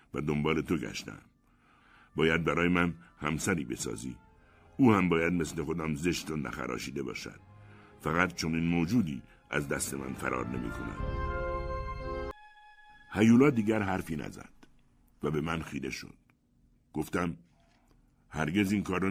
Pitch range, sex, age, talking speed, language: 75-100 Hz, male, 60-79, 130 wpm, Persian